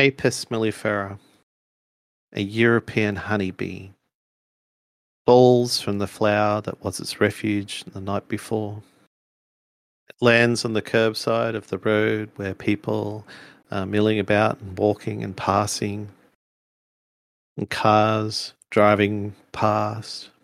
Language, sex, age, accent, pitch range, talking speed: English, male, 40-59, Australian, 100-110 Hz, 110 wpm